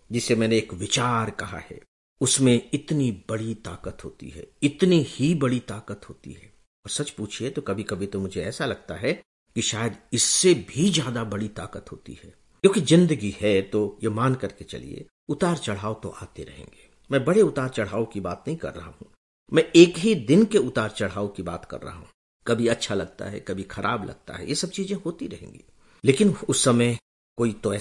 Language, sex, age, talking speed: English, male, 50-69, 170 wpm